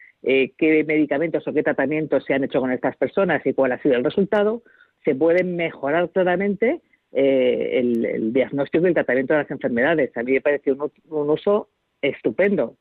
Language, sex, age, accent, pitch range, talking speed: Spanish, female, 50-69, Spanish, 140-200 Hz, 185 wpm